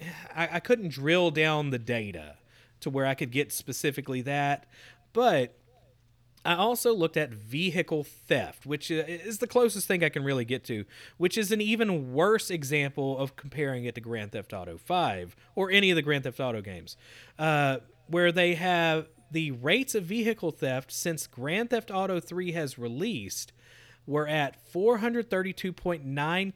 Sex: male